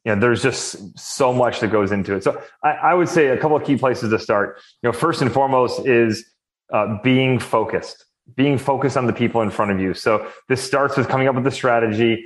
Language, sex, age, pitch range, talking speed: English, male, 30-49, 115-135 Hz, 240 wpm